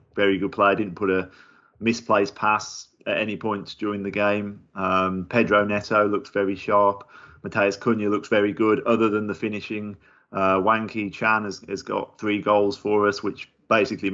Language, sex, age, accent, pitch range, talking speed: English, male, 30-49, British, 95-105 Hz, 175 wpm